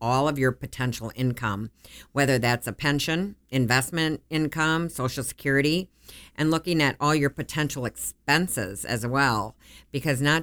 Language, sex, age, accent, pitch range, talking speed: English, female, 50-69, American, 125-160 Hz, 140 wpm